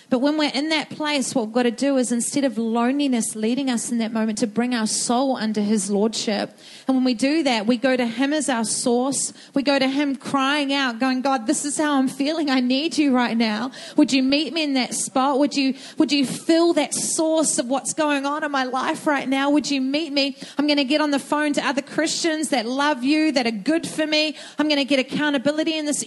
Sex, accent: female, Australian